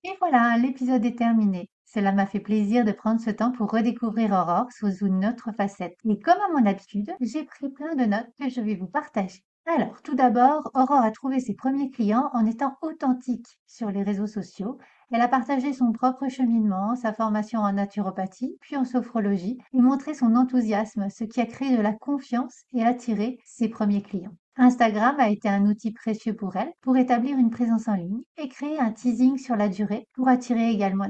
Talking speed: 200 wpm